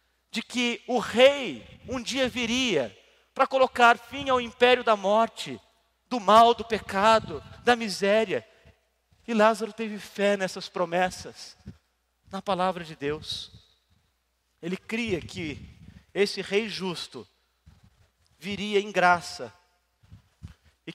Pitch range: 145-245 Hz